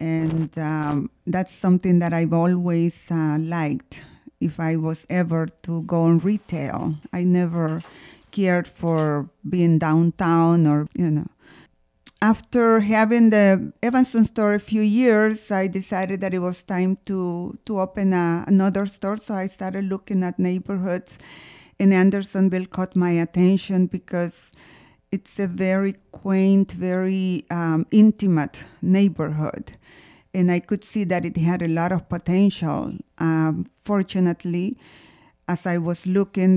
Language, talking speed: English, 135 wpm